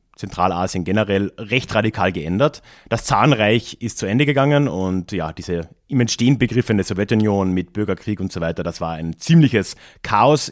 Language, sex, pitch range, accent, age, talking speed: German, male, 95-135 Hz, German, 30-49, 160 wpm